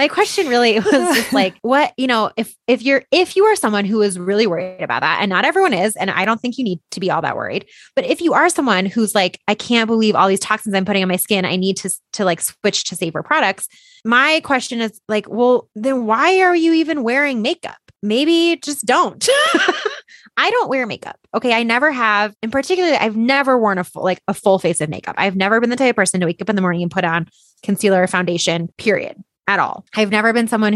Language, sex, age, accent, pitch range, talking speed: English, female, 20-39, American, 195-255 Hz, 245 wpm